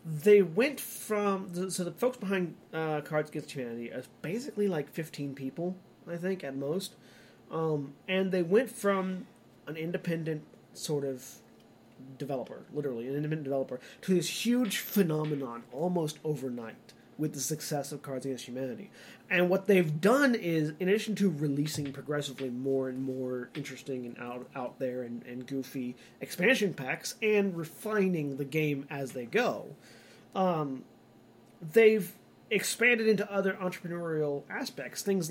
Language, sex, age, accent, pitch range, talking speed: English, male, 30-49, American, 135-180 Hz, 145 wpm